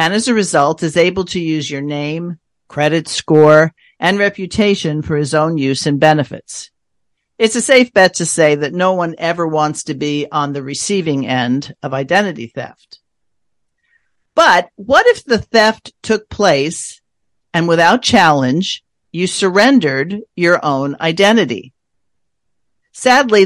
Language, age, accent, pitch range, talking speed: English, 50-69, American, 145-200 Hz, 145 wpm